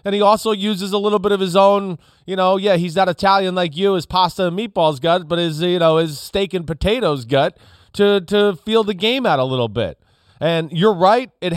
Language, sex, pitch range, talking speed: English, male, 135-185 Hz, 235 wpm